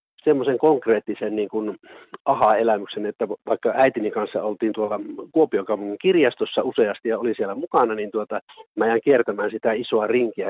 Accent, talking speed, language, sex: native, 145 wpm, Finnish, male